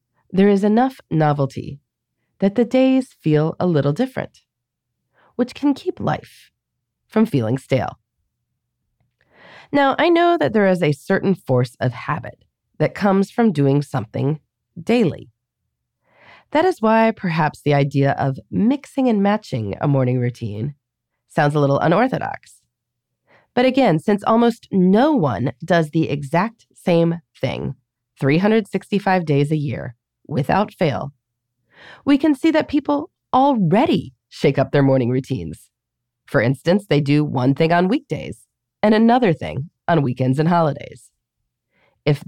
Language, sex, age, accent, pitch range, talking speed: English, female, 30-49, American, 125-205 Hz, 135 wpm